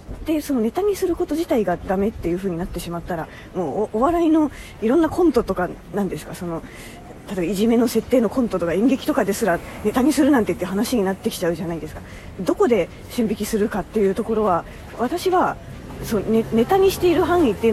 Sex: female